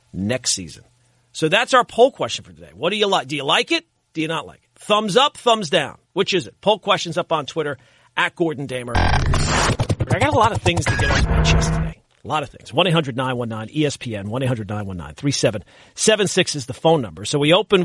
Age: 40-59